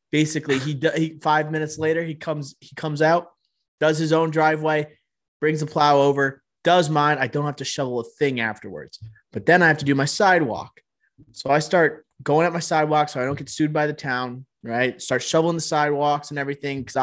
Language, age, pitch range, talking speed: English, 20-39, 140-165 Hz, 210 wpm